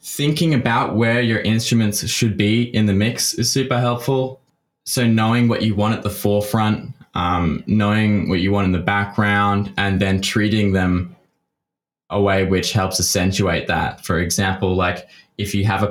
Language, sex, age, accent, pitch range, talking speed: English, male, 10-29, Australian, 95-110 Hz, 175 wpm